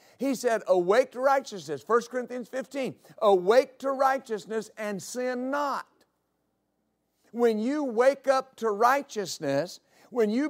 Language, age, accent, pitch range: English, 50-69, American, 205-250 Hz